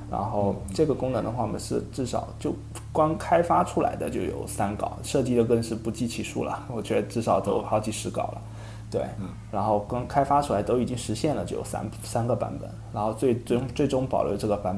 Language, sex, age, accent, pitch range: Chinese, male, 20-39, native, 100-115 Hz